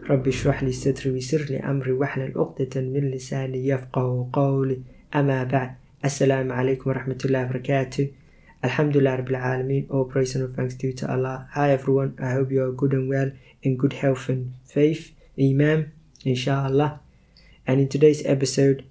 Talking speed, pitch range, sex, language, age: 160 wpm, 135-150 Hz, male, English, 20-39